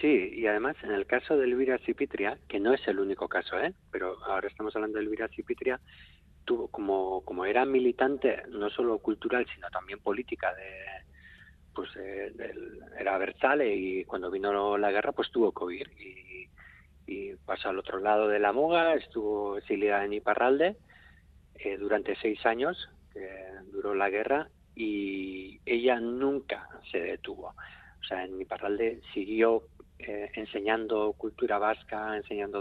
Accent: Spanish